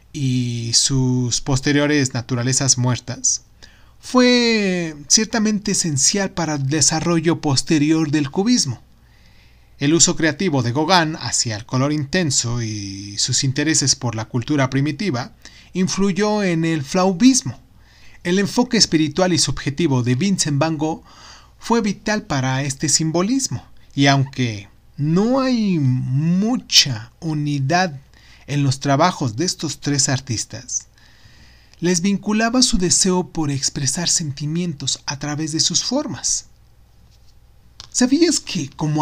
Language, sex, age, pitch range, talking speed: Spanish, male, 30-49, 125-175 Hz, 115 wpm